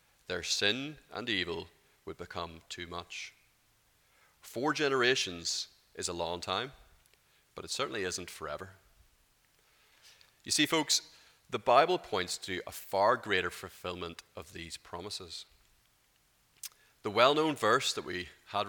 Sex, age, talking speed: male, 30-49, 125 wpm